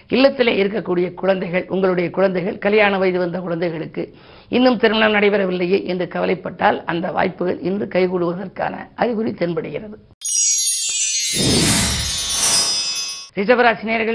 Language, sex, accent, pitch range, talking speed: Tamil, female, native, 185-225 Hz, 85 wpm